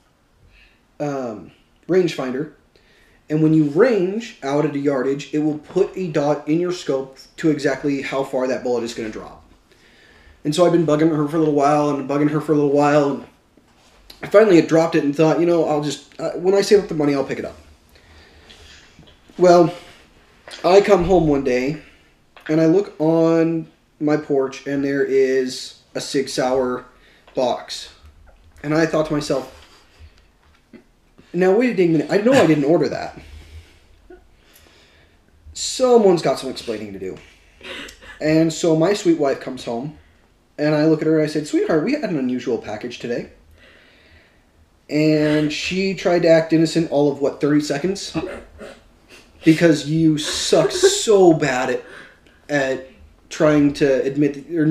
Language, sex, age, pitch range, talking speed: English, male, 30-49, 130-165 Hz, 165 wpm